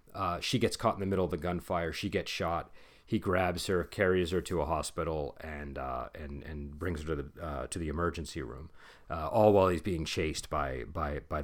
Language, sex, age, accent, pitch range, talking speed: English, male, 40-59, American, 80-100 Hz, 225 wpm